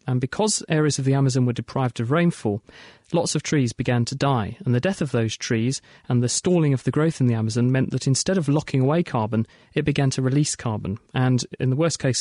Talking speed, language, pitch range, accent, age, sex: 230 wpm, English, 120-145 Hz, British, 40-59, male